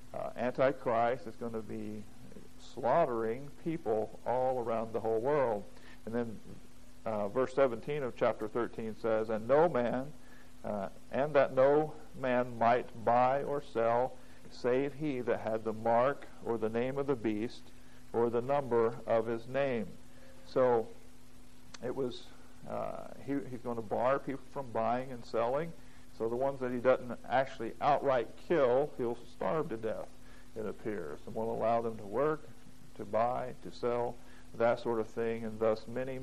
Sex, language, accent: male, English, American